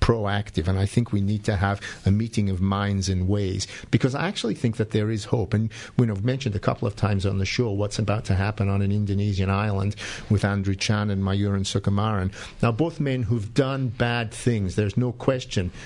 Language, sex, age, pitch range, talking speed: English, male, 50-69, 100-120 Hz, 210 wpm